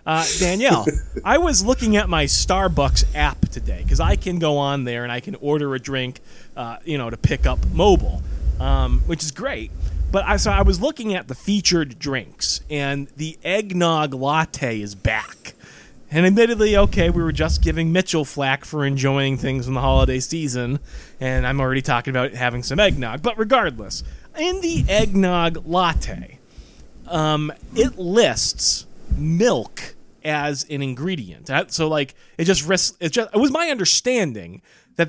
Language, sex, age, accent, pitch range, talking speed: English, male, 30-49, American, 130-185 Hz, 165 wpm